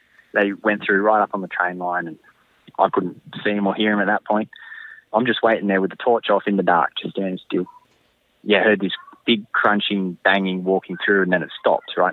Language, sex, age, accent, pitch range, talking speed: English, male, 20-39, Australian, 95-115 Hz, 235 wpm